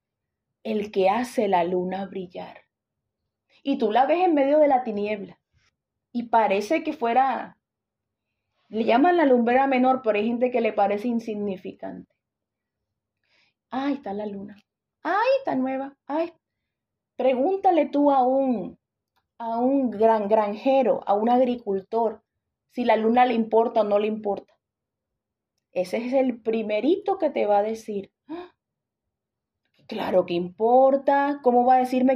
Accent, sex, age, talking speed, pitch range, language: Venezuelan, female, 30-49, 140 wpm, 220-285 Hz, English